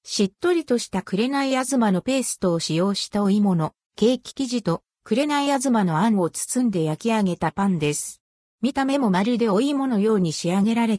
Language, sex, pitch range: Japanese, female, 175-265 Hz